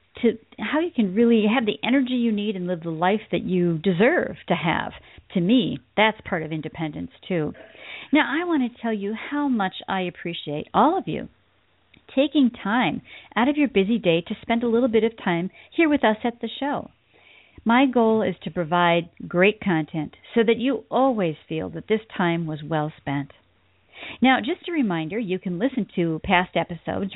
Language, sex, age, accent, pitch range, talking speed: English, female, 50-69, American, 180-250 Hz, 190 wpm